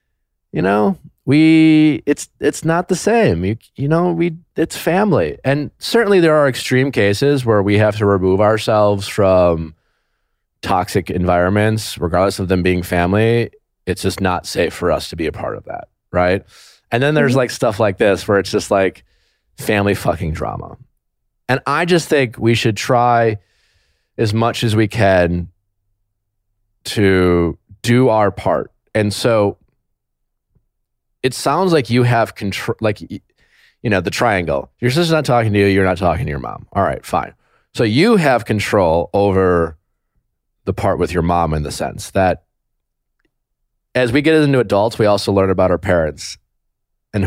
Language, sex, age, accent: English, male, 30-49, American